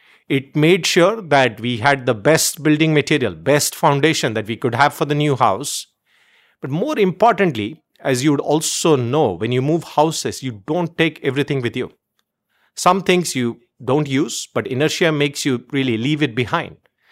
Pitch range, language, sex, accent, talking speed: 135-170 Hz, English, male, Indian, 180 wpm